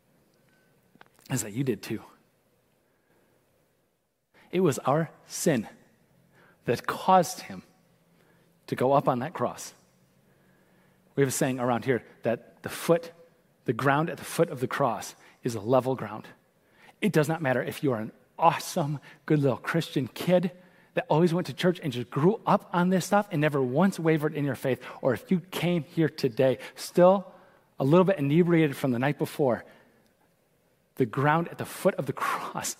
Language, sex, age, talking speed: English, male, 30-49, 170 wpm